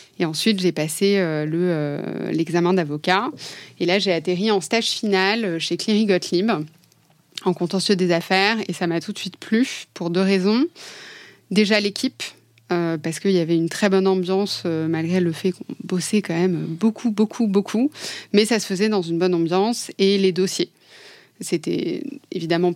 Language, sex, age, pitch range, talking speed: French, female, 30-49, 170-210 Hz, 180 wpm